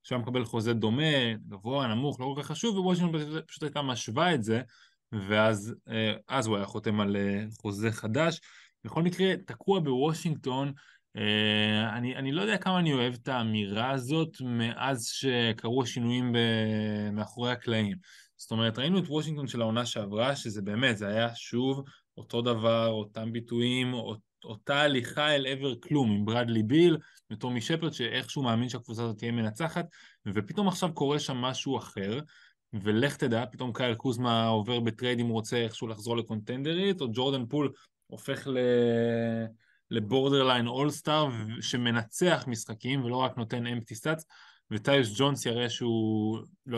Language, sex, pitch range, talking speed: Hebrew, male, 115-140 Hz, 145 wpm